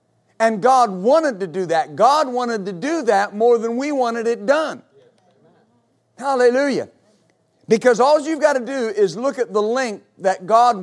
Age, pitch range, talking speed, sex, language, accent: 50-69, 190-235 Hz, 170 wpm, male, English, American